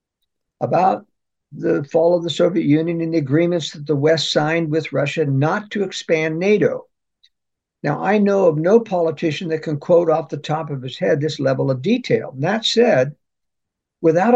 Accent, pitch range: American, 145-200 Hz